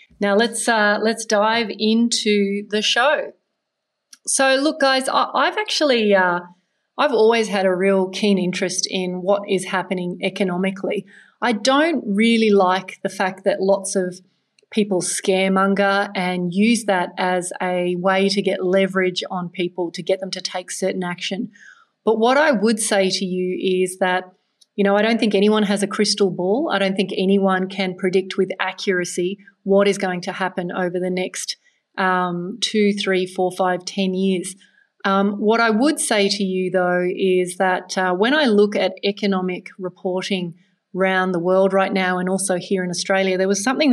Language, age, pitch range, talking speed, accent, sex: English, 30-49, 185-210 Hz, 180 wpm, Australian, female